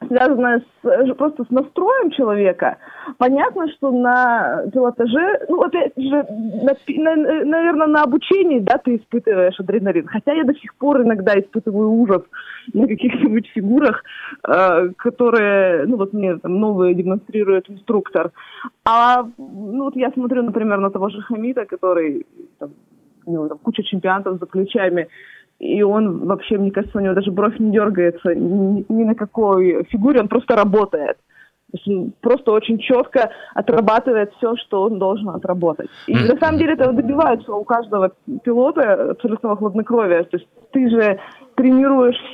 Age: 20-39